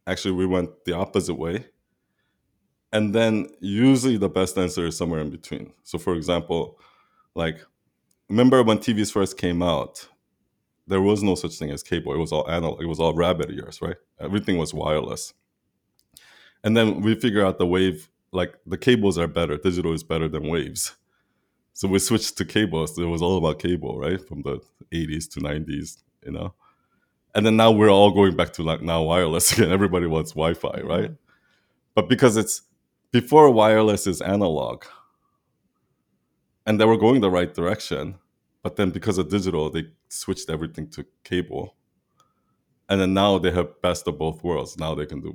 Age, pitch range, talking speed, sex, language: 20-39, 80-105 Hz, 180 wpm, male, English